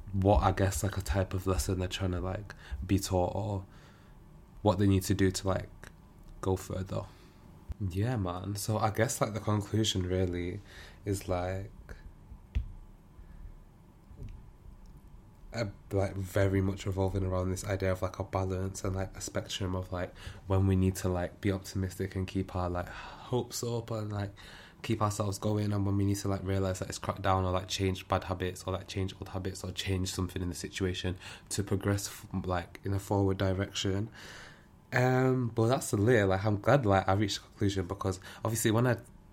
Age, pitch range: 20-39, 95-105 Hz